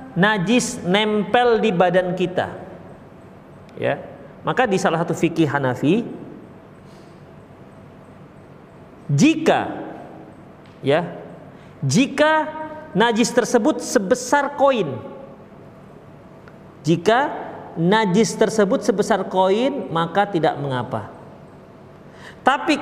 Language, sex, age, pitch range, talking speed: Indonesian, male, 40-59, 200-285 Hz, 75 wpm